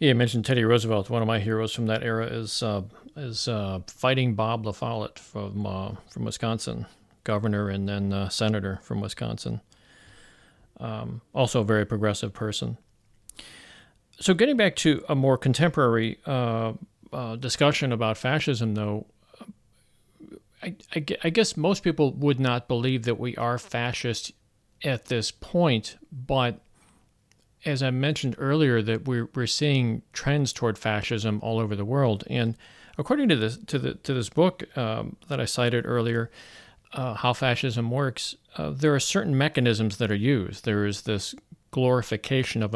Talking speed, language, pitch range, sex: 155 wpm, English, 110-130 Hz, male